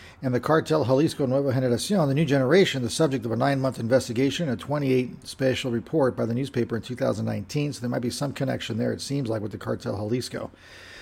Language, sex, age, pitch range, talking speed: English, male, 40-59, 120-145 Hz, 205 wpm